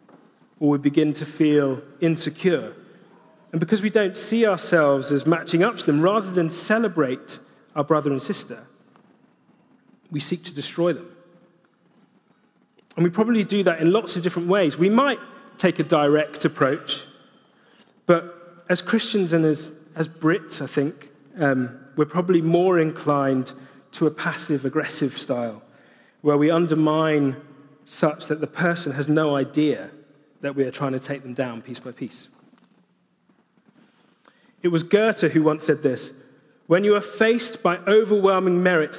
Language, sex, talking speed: English, male, 150 wpm